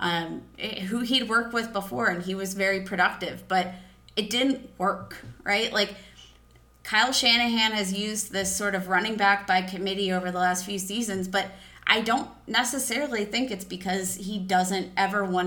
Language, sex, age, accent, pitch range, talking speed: English, female, 30-49, American, 185-230 Hz, 170 wpm